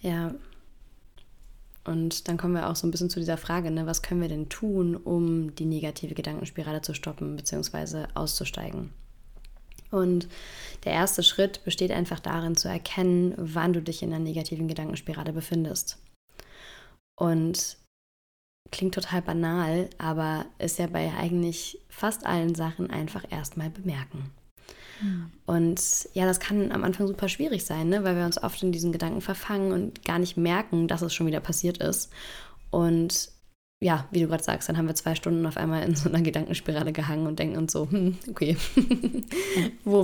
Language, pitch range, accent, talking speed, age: German, 160-185 Hz, German, 165 wpm, 20-39